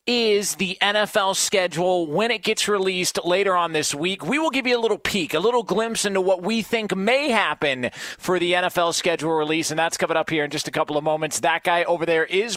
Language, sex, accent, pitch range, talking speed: English, male, American, 150-185 Hz, 235 wpm